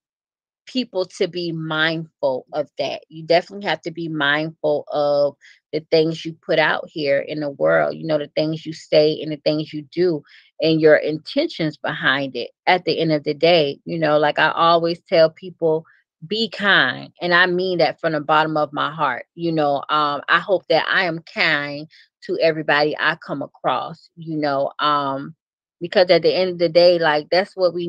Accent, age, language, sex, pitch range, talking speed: American, 30-49, English, female, 150-180 Hz, 195 wpm